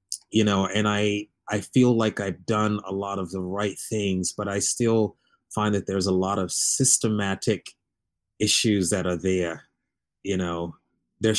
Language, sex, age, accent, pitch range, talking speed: English, male, 30-49, American, 90-105 Hz, 170 wpm